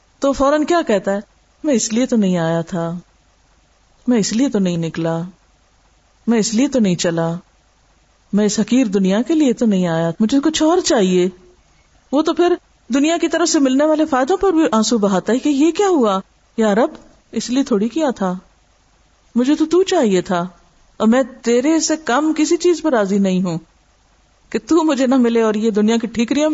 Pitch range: 185-260 Hz